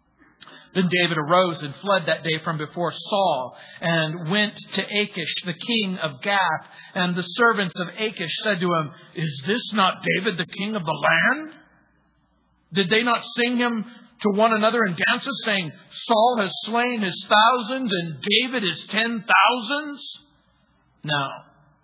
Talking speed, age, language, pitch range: 155 wpm, 50-69, English, 165-220 Hz